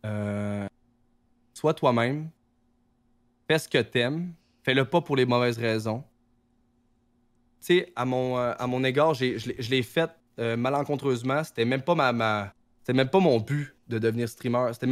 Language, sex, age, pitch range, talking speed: French, male, 20-39, 120-130 Hz, 175 wpm